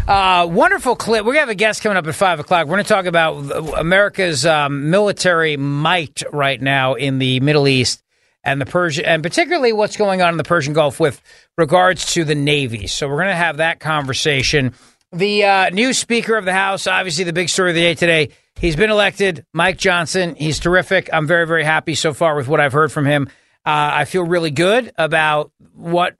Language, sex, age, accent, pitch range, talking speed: English, male, 40-59, American, 160-225 Hz, 210 wpm